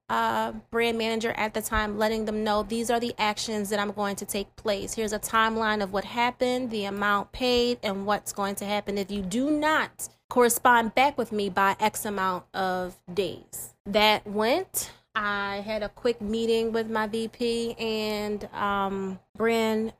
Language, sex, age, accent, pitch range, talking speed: English, female, 20-39, American, 200-235 Hz, 175 wpm